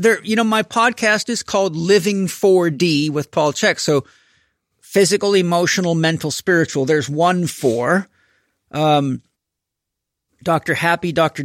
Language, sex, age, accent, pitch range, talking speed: English, male, 50-69, American, 140-185 Hz, 130 wpm